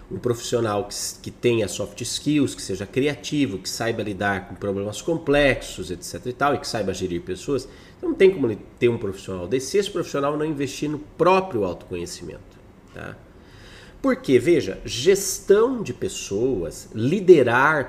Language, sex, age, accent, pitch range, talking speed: Portuguese, male, 40-59, Brazilian, 115-185 Hz, 150 wpm